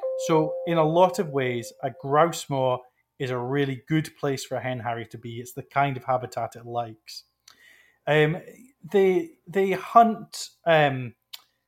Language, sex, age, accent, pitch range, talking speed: English, male, 20-39, British, 125-160 Hz, 165 wpm